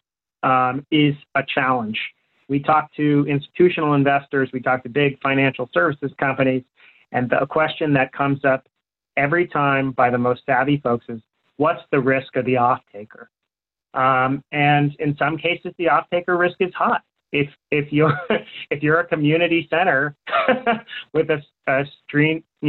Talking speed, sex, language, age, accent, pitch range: 160 wpm, male, English, 30-49, American, 135-160 Hz